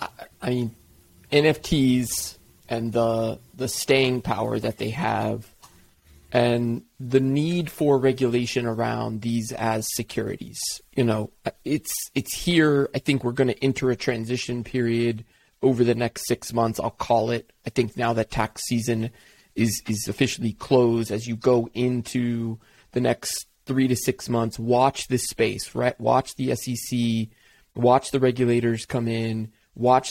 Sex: male